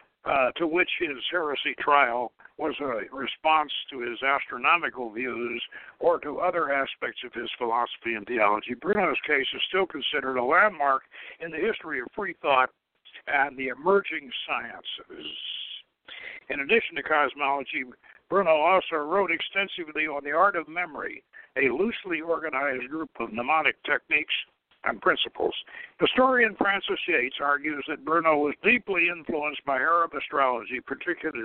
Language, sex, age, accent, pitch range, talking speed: English, male, 60-79, American, 135-185 Hz, 140 wpm